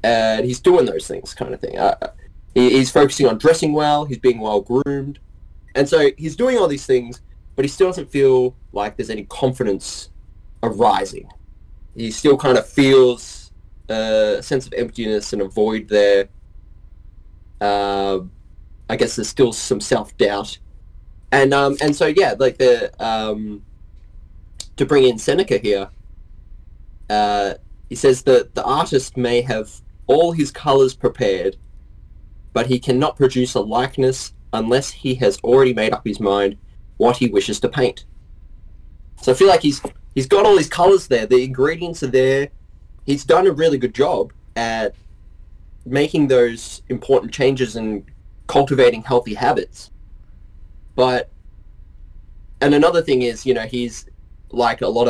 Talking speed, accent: 155 wpm, Australian